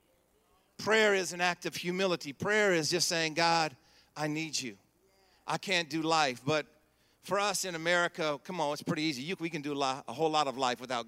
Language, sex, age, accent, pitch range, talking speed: English, male, 50-69, American, 145-185 Hz, 205 wpm